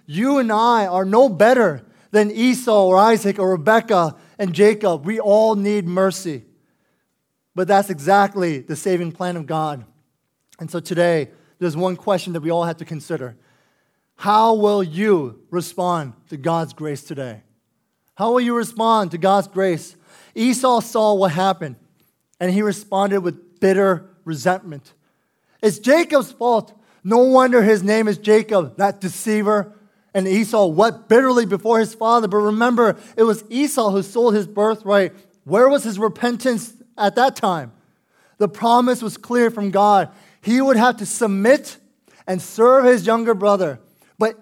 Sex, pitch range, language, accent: male, 180-230 Hz, English, American